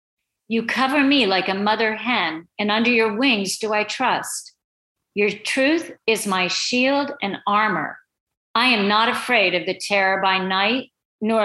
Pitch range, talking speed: 195-245 Hz, 160 wpm